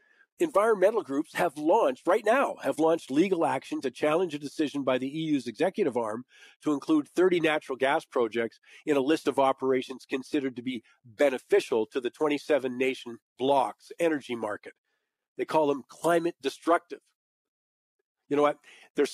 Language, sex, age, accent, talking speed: English, male, 50-69, American, 155 wpm